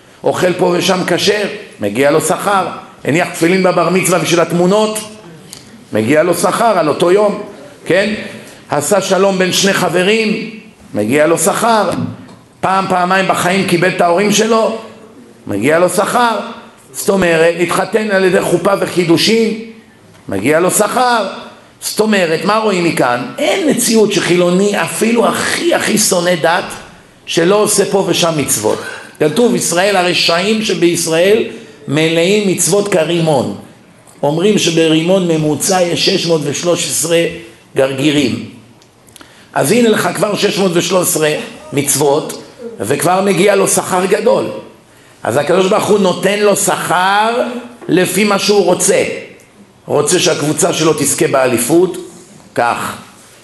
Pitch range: 165-205 Hz